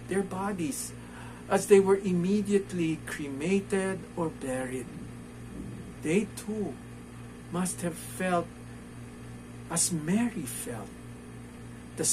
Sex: male